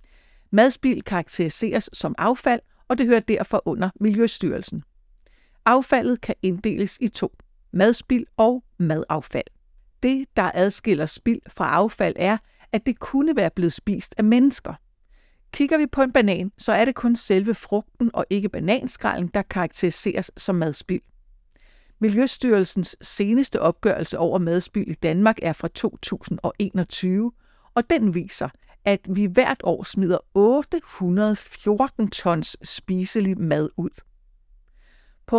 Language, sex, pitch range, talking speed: Danish, female, 175-230 Hz, 125 wpm